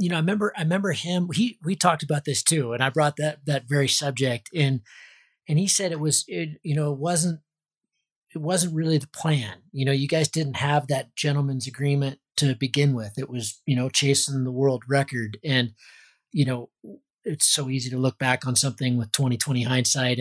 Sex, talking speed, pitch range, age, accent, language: male, 210 wpm, 130-155 Hz, 30-49, American, English